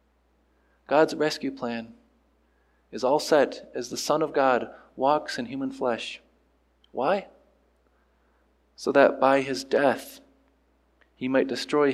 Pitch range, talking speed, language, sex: 120-170 Hz, 120 wpm, English, male